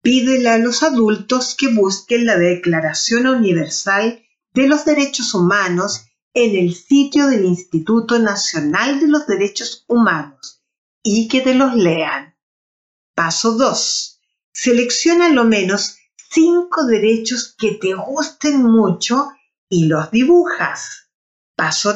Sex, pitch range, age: female, 185-270 Hz, 50-69